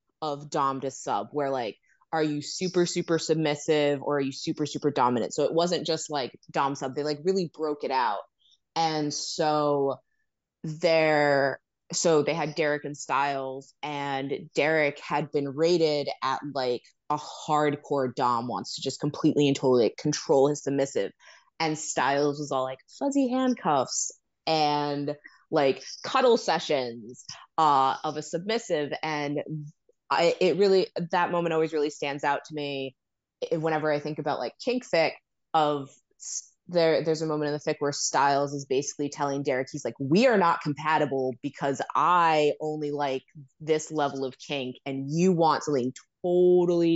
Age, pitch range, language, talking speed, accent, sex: 20-39, 145-170 Hz, English, 160 wpm, American, female